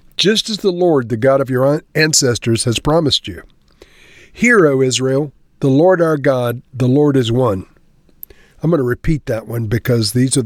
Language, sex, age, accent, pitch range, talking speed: English, male, 50-69, American, 120-155 Hz, 185 wpm